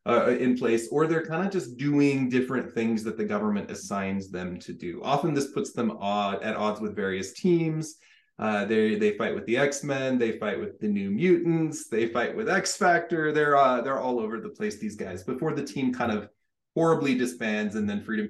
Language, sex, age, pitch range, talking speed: English, male, 20-39, 120-190 Hz, 210 wpm